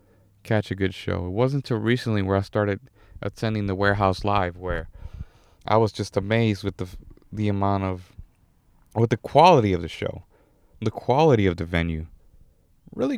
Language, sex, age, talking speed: English, male, 30-49, 170 wpm